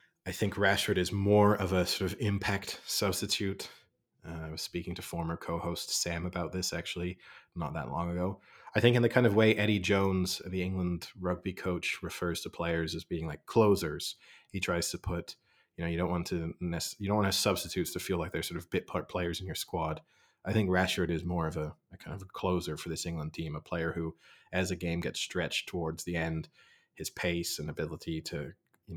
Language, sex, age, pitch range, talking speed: English, male, 30-49, 85-95 Hz, 220 wpm